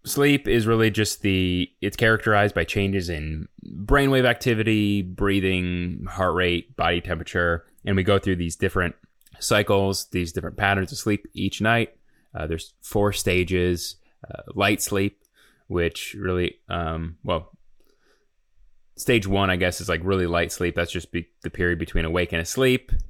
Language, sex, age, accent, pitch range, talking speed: English, male, 20-39, American, 90-105 Hz, 155 wpm